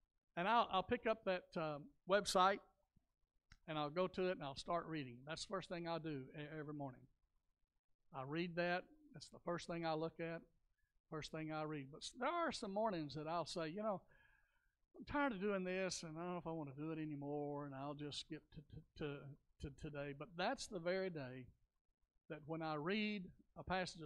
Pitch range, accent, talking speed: 155-210 Hz, American, 205 wpm